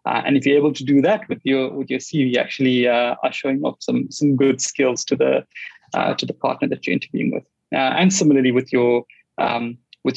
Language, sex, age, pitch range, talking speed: English, male, 20-39, 130-165 Hz, 230 wpm